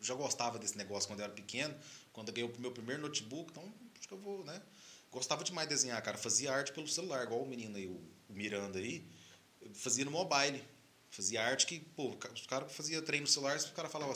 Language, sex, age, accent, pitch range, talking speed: Portuguese, male, 30-49, Brazilian, 110-145 Hz, 235 wpm